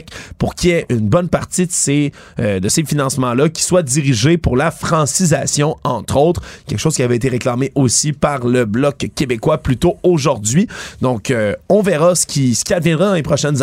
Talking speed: 205 wpm